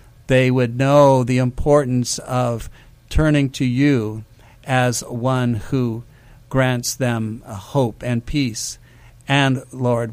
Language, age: English, 60-79